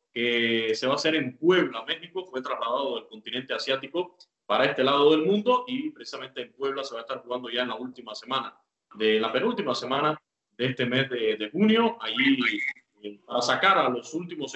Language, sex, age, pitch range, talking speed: Spanish, male, 20-39, 120-175 Hz, 200 wpm